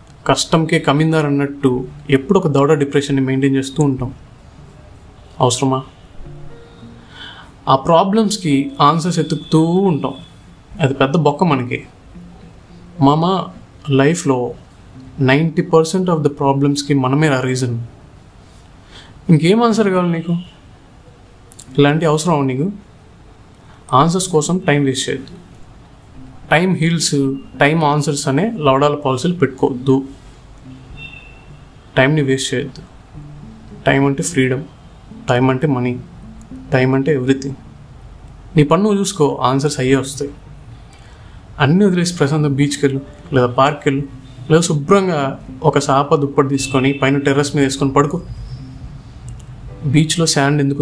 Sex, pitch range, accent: male, 130-155 Hz, native